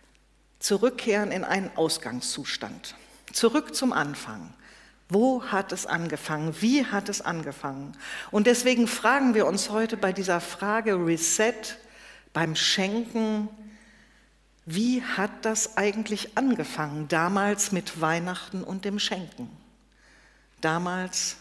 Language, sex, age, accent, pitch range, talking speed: German, female, 50-69, German, 175-225 Hz, 110 wpm